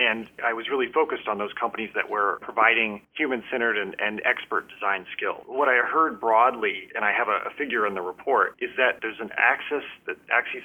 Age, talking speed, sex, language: 30-49, 210 wpm, male, English